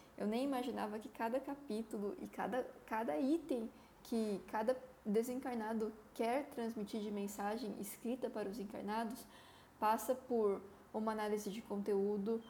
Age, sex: 10-29, female